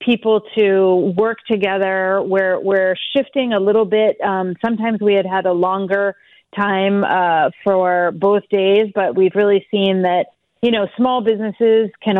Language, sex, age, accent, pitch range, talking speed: English, female, 30-49, American, 185-210 Hz, 155 wpm